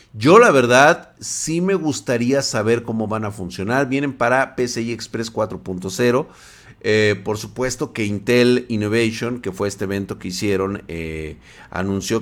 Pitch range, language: 100-140 Hz, Spanish